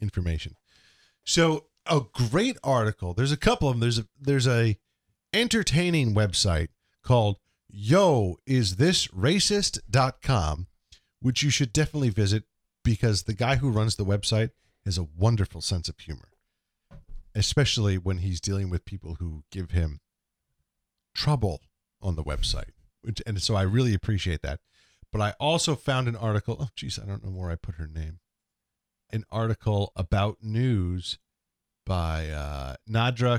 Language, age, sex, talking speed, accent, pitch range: English, 40-59, male, 145 wpm, American, 90-130 Hz